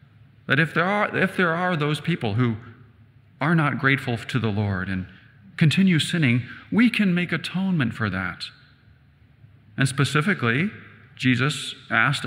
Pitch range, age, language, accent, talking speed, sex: 115-150 Hz, 40-59, English, American, 140 wpm, male